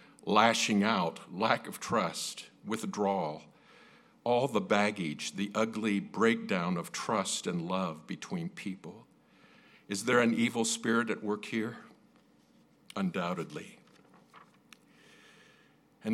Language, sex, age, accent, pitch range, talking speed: English, male, 50-69, American, 100-125 Hz, 105 wpm